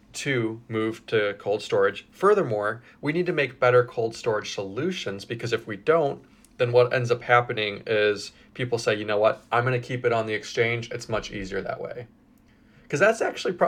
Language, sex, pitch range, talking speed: English, male, 115-155 Hz, 195 wpm